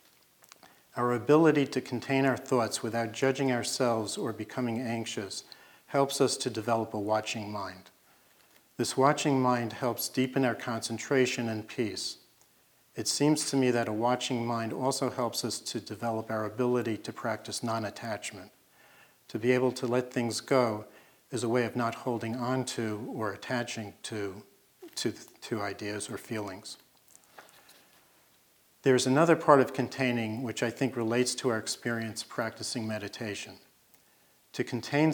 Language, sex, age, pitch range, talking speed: English, male, 50-69, 110-130 Hz, 145 wpm